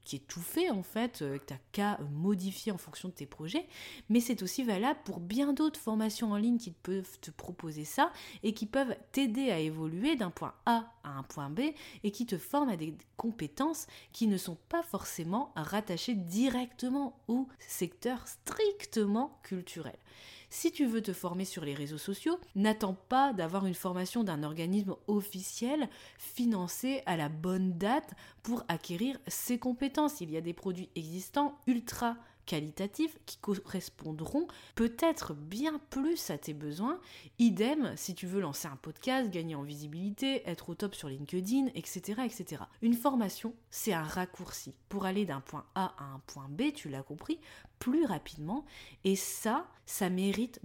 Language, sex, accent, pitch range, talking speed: French, female, French, 170-250 Hz, 170 wpm